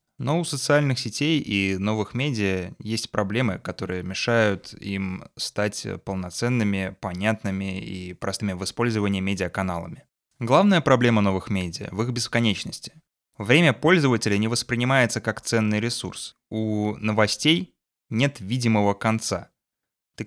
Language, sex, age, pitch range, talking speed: Russian, male, 20-39, 100-125 Hz, 120 wpm